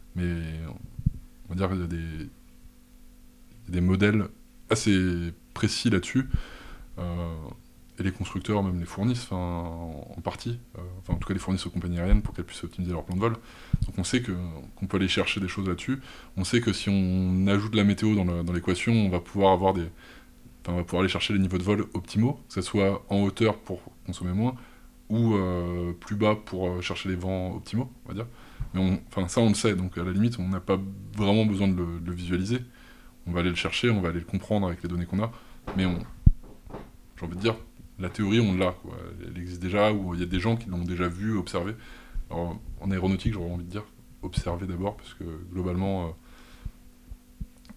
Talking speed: 215 wpm